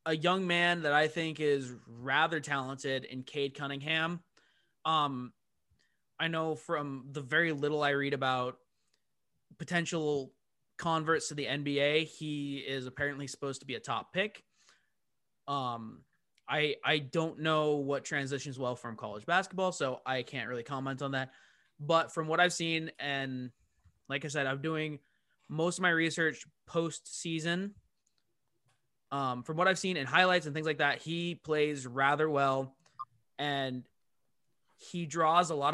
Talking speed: 150 wpm